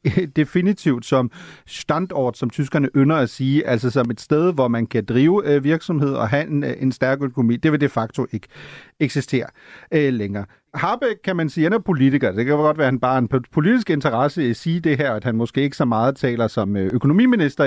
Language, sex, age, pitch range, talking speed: Danish, male, 40-59, 120-170 Hz, 205 wpm